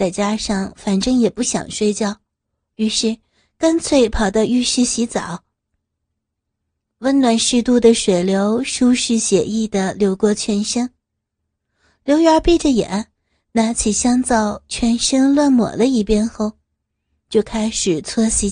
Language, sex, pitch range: Chinese, female, 205-250 Hz